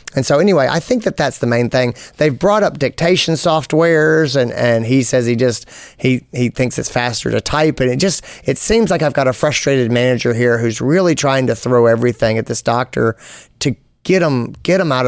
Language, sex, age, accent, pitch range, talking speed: English, male, 30-49, American, 120-160 Hz, 220 wpm